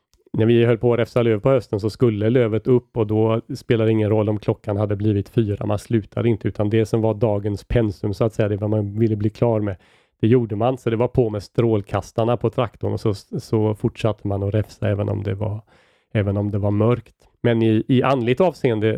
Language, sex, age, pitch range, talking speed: Swedish, male, 30-49, 105-120 Hz, 235 wpm